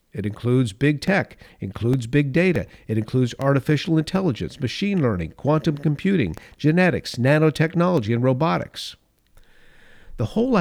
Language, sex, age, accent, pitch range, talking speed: English, male, 50-69, American, 120-150 Hz, 120 wpm